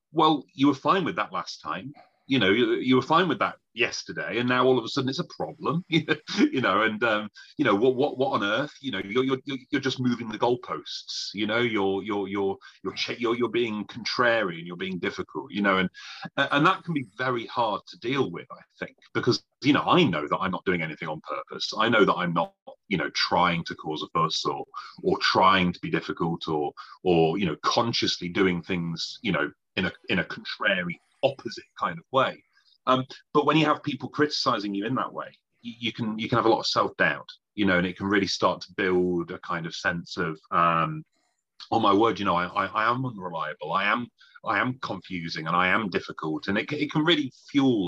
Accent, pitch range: British, 95-150 Hz